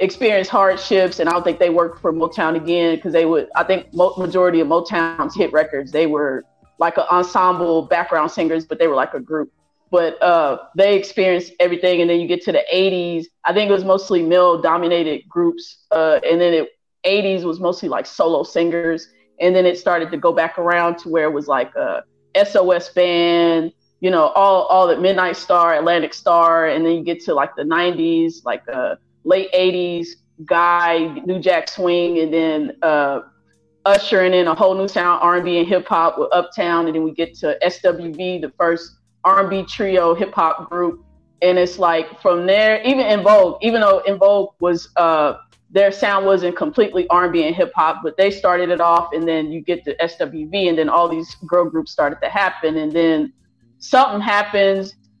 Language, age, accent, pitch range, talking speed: English, 20-39, American, 165-190 Hz, 195 wpm